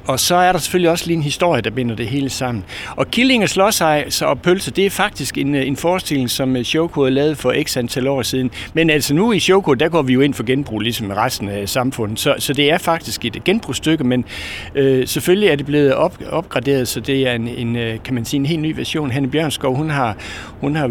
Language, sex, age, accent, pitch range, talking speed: Danish, male, 60-79, native, 115-150 Hz, 225 wpm